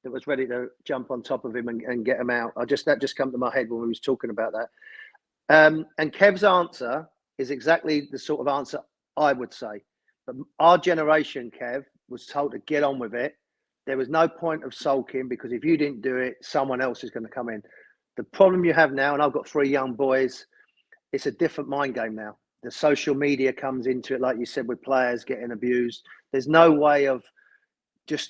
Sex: male